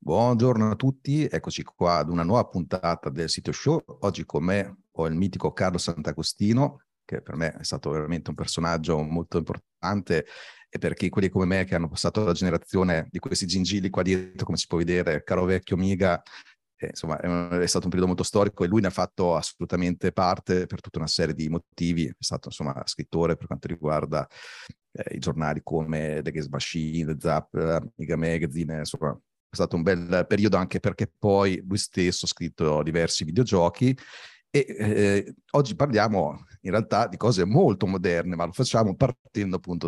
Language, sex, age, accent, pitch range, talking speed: Italian, male, 30-49, native, 85-100 Hz, 180 wpm